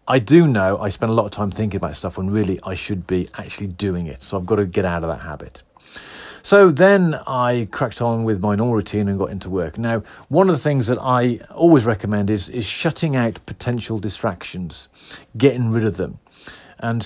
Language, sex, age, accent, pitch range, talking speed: English, male, 40-59, British, 100-130 Hz, 220 wpm